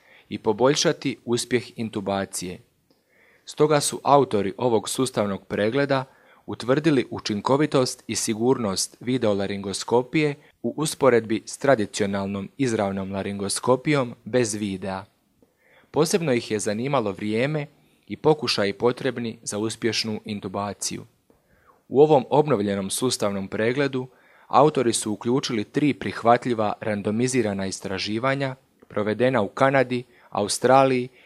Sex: male